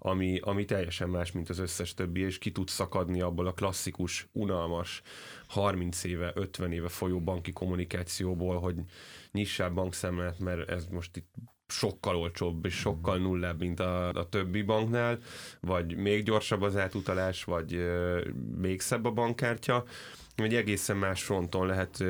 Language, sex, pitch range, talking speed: Hungarian, male, 90-105 Hz, 150 wpm